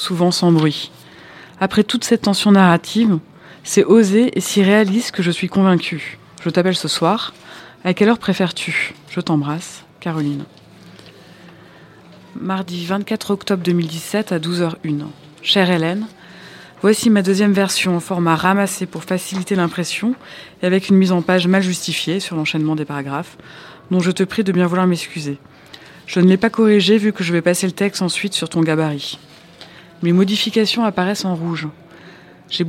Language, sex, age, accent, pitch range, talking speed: French, female, 20-39, French, 165-195 Hz, 160 wpm